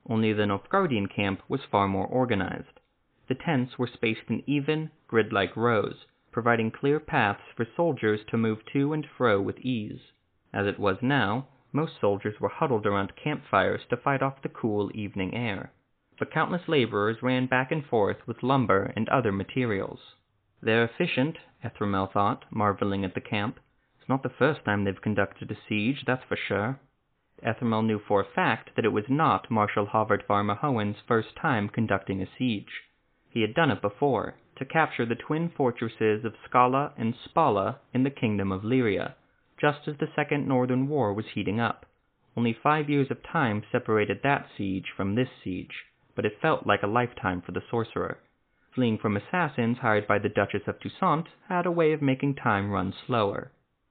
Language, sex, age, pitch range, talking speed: English, male, 30-49, 105-135 Hz, 175 wpm